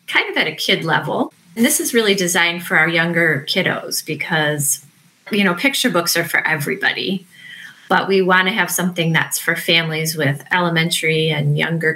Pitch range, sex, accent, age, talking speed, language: 165-195 Hz, female, American, 30-49, 180 wpm, English